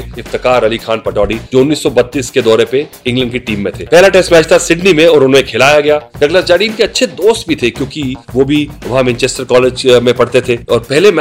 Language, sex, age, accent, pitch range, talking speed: Hindi, male, 30-49, native, 125-160 Hz, 55 wpm